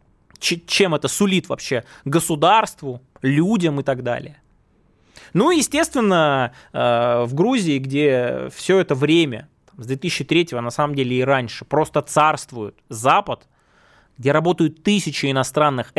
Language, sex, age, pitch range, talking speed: Russian, male, 20-39, 130-175 Hz, 120 wpm